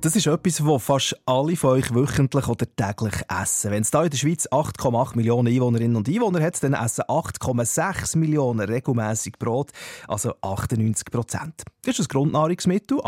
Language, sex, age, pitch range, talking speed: German, male, 30-49, 110-145 Hz, 170 wpm